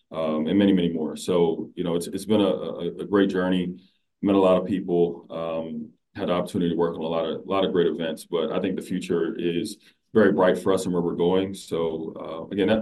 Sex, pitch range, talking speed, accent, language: male, 85-95 Hz, 255 wpm, American, English